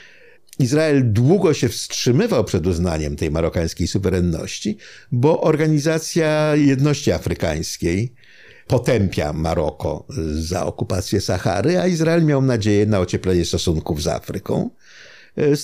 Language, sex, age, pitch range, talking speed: Polish, male, 50-69, 90-120 Hz, 105 wpm